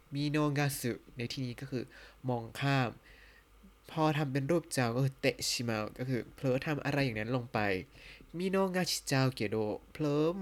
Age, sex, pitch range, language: 20-39, male, 120-150 Hz, Thai